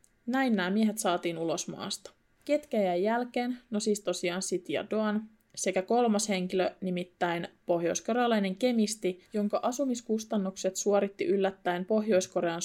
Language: Finnish